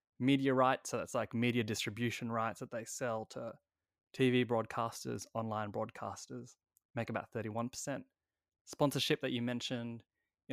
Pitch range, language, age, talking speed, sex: 110-125 Hz, English, 20-39, 135 wpm, male